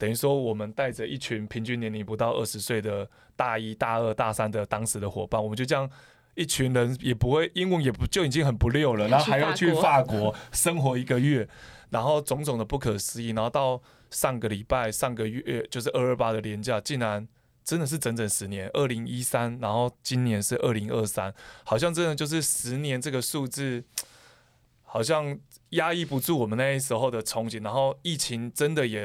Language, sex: Chinese, male